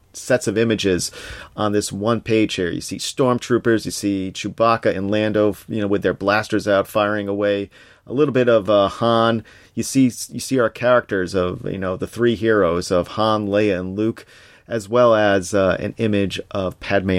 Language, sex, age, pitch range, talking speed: English, male, 40-59, 95-115 Hz, 190 wpm